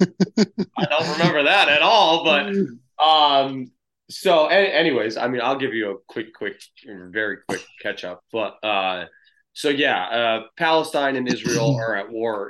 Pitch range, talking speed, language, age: 100-135 Hz, 160 wpm, English, 20-39